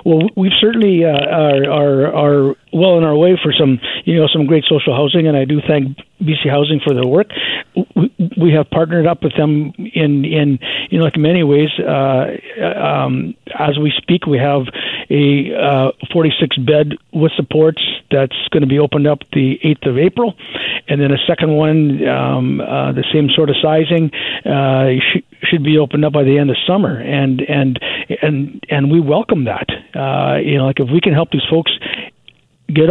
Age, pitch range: 50-69, 140-160 Hz